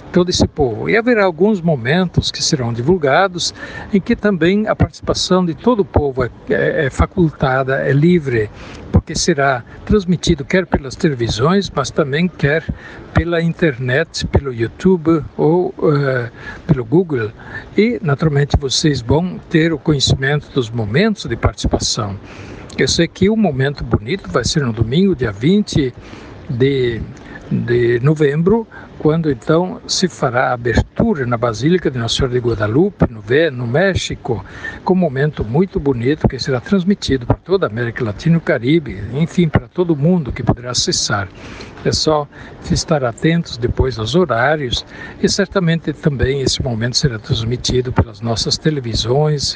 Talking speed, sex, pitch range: 150 wpm, male, 120-170 Hz